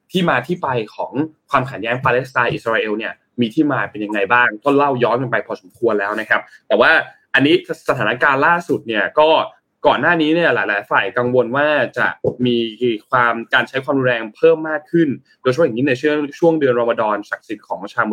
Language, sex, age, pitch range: Thai, male, 20-39, 120-150 Hz